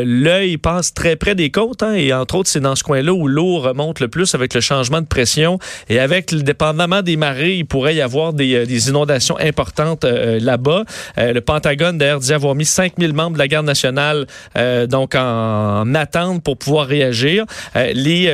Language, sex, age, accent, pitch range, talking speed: French, male, 40-59, Canadian, 135-175 Hz, 205 wpm